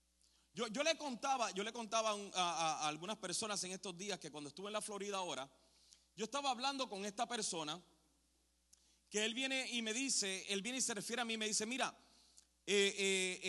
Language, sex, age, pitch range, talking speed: Spanish, male, 30-49, 165-260 Hz, 195 wpm